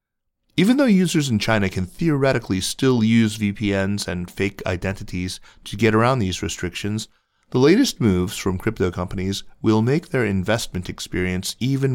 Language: English